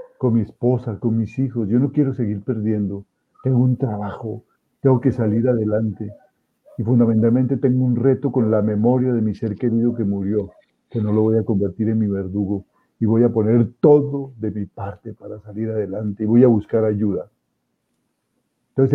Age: 50-69